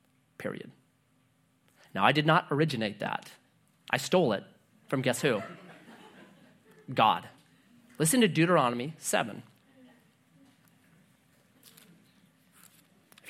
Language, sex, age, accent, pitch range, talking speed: English, male, 30-49, American, 135-190 Hz, 85 wpm